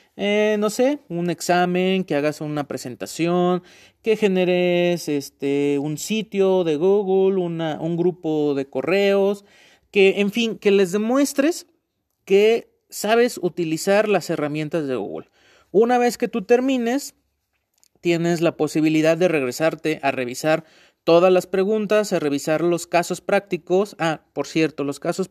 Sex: male